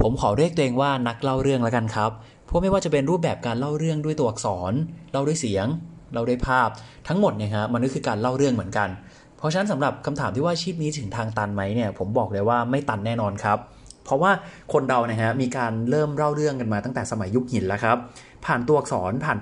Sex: male